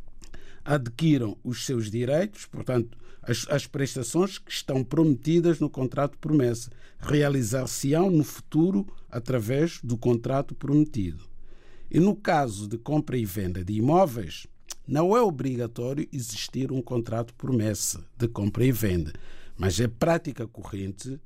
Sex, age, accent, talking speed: male, 50-69, Brazilian, 135 wpm